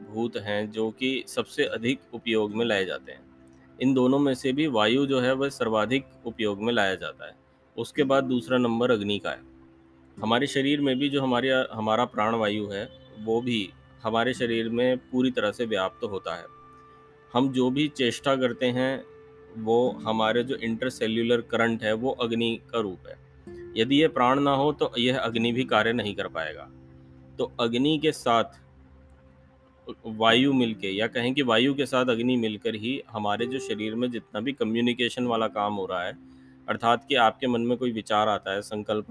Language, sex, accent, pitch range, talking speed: Hindi, male, native, 105-130 Hz, 185 wpm